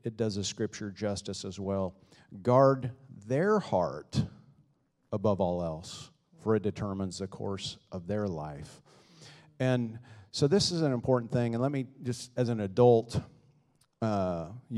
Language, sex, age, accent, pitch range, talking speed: English, male, 40-59, American, 105-135 Hz, 145 wpm